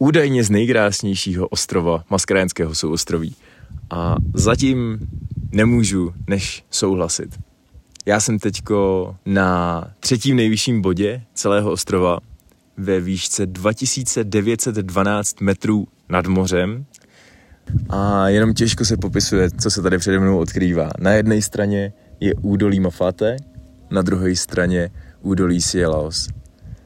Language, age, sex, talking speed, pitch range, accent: Czech, 20-39, male, 105 wpm, 95-110 Hz, native